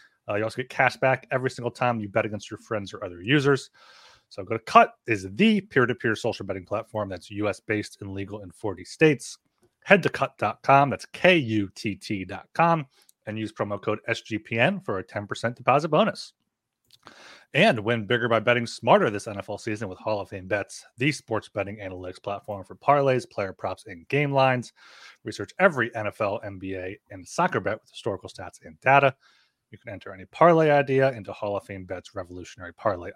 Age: 30-49